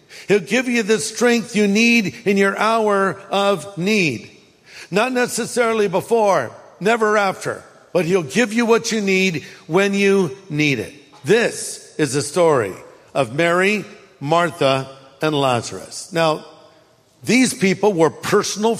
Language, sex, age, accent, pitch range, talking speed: English, male, 50-69, American, 165-220 Hz, 140 wpm